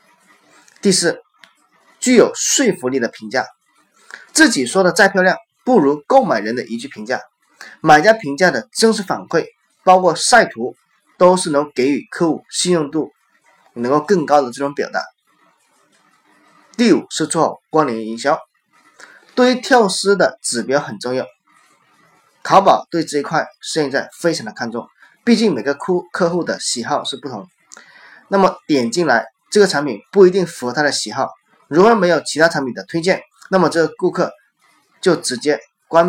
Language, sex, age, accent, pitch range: Chinese, male, 20-39, native, 140-195 Hz